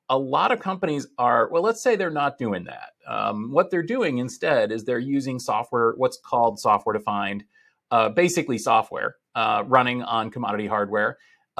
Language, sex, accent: English, male, American